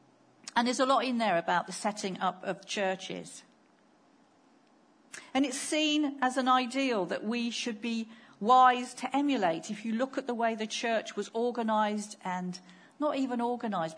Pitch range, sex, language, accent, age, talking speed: 200-270 Hz, female, English, British, 50-69, 165 wpm